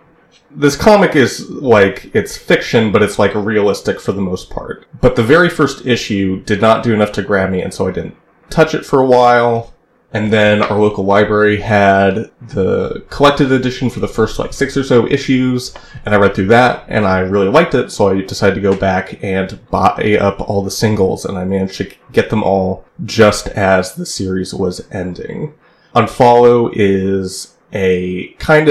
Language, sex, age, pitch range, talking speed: English, male, 30-49, 95-120 Hz, 190 wpm